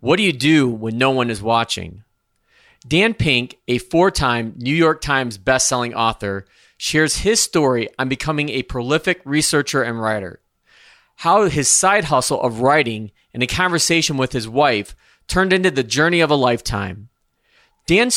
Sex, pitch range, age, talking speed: male, 125-160 Hz, 30-49, 160 wpm